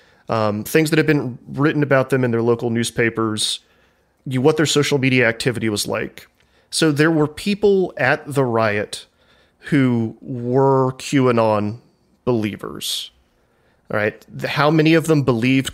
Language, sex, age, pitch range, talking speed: English, male, 30-49, 115-140 Hz, 150 wpm